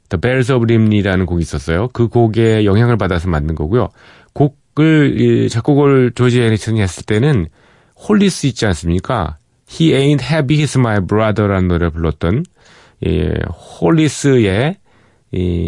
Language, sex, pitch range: Korean, male, 95-125 Hz